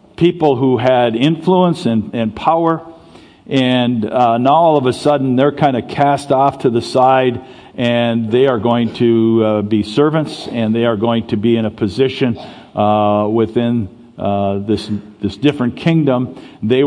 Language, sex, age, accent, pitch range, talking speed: English, male, 50-69, American, 115-140 Hz, 165 wpm